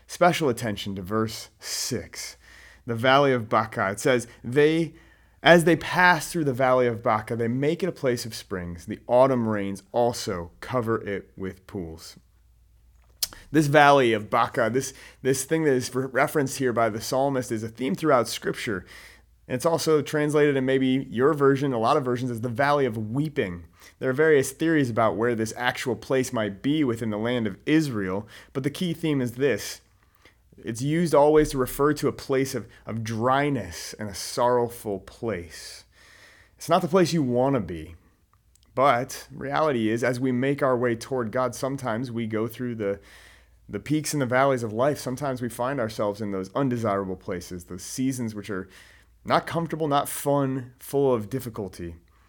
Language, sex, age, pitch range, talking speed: English, male, 30-49, 100-135 Hz, 180 wpm